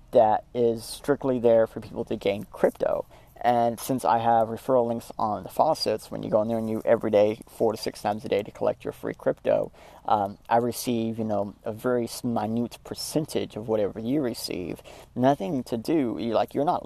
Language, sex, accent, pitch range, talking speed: English, male, American, 110-125 Hz, 205 wpm